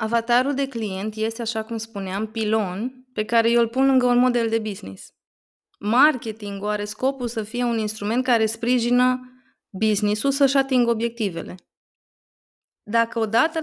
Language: Romanian